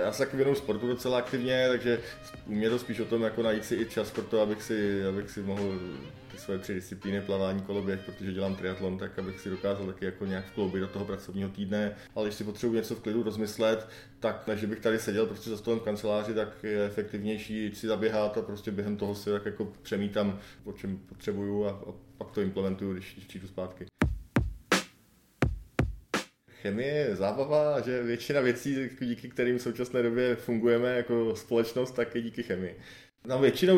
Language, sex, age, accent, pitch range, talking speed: Czech, male, 20-39, native, 100-125 Hz, 180 wpm